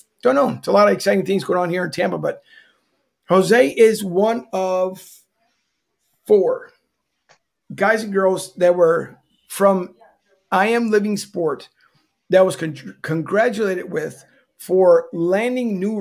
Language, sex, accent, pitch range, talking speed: English, male, American, 175-200 Hz, 135 wpm